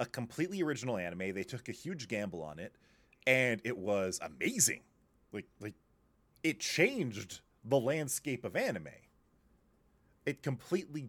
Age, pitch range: 30-49, 95-130 Hz